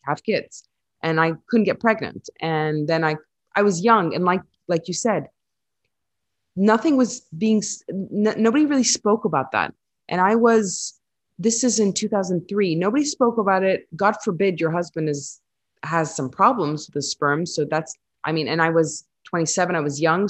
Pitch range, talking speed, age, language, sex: 160-220 Hz, 175 wpm, 30-49, English, female